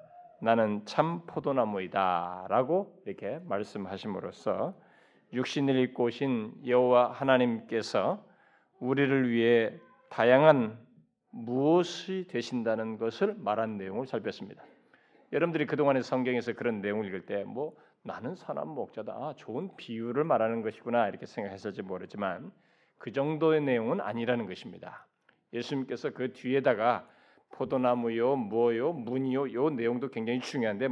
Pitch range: 120-165 Hz